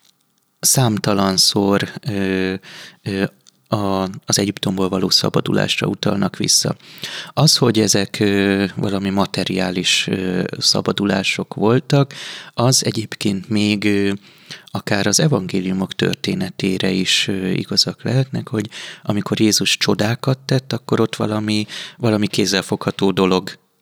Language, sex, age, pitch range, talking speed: Hungarian, male, 30-49, 100-120 Hz, 105 wpm